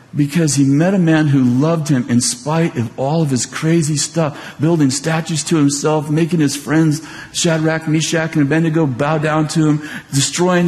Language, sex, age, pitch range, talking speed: English, male, 50-69, 145-195 Hz, 180 wpm